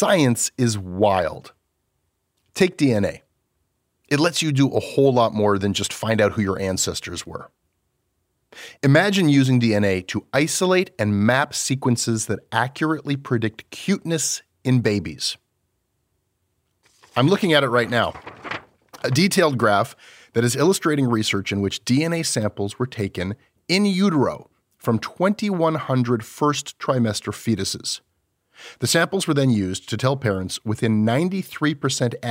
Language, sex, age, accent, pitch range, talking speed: English, male, 30-49, American, 95-135 Hz, 130 wpm